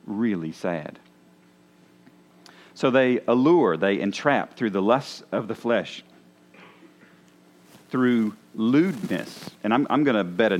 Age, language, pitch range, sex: 50-69, English, 75-110 Hz, male